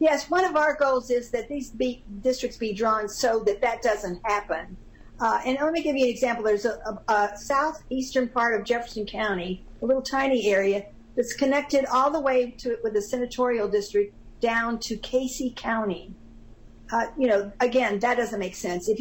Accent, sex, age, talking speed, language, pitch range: American, female, 50-69, 195 wpm, English, 200-250 Hz